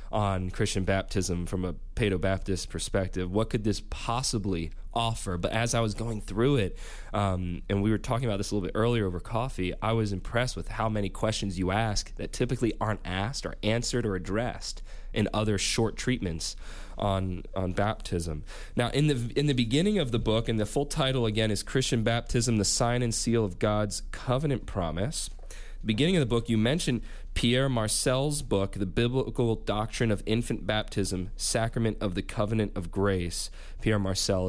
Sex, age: male, 20-39